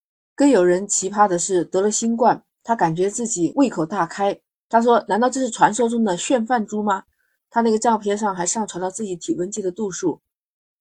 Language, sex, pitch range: Chinese, female, 185-230 Hz